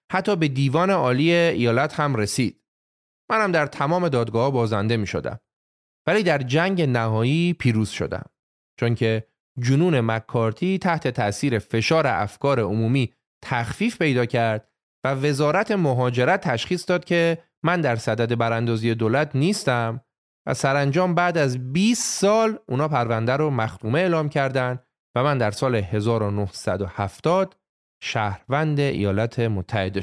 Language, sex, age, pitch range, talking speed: Persian, male, 30-49, 115-170 Hz, 130 wpm